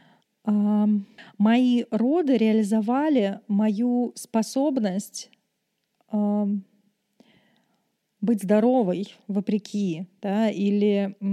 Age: 20-39